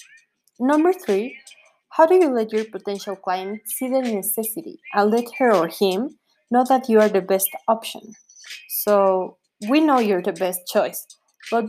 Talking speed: 165 wpm